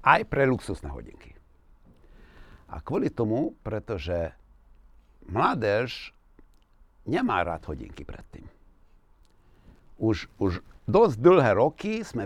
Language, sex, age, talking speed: Slovak, male, 60-79, 95 wpm